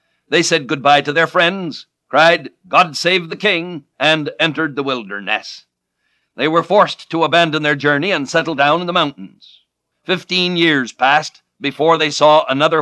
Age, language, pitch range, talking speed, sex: 60-79, English, 145-195 Hz, 165 wpm, male